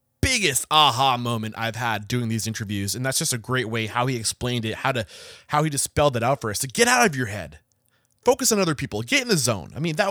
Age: 20-39